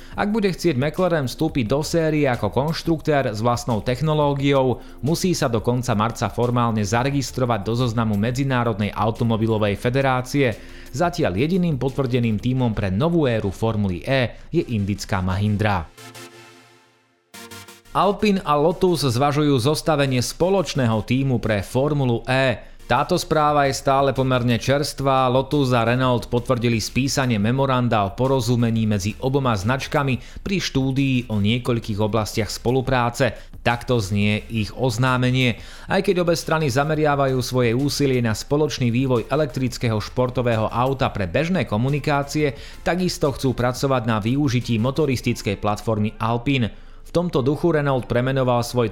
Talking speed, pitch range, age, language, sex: 125 wpm, 115-145 Hz, 30-49, Slovak, male